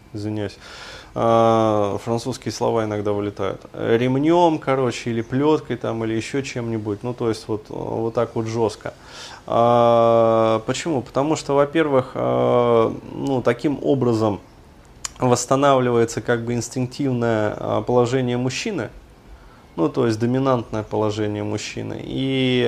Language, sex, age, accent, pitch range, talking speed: Russian, male, 20-39, native, 110-130 Hz, 105 wpm